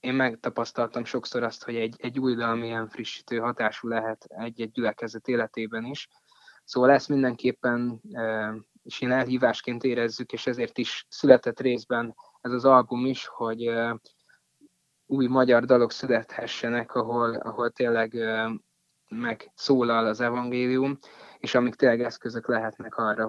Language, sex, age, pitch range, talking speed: Hungarian, male, 20-39, 115-125 Hz, 125 wpm